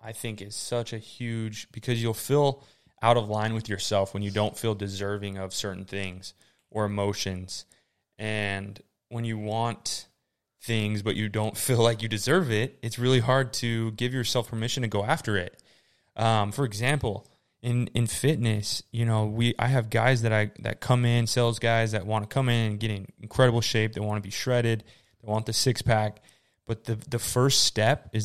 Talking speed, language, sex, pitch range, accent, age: 200 wpm, English, male, 100-115 Hz, American, 20-39